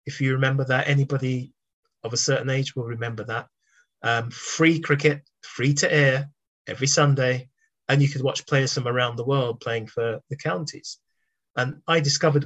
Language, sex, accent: English, male, British